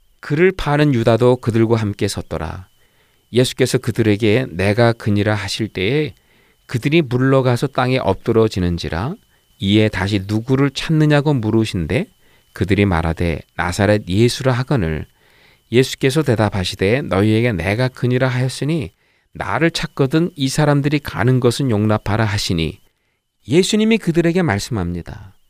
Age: 40-59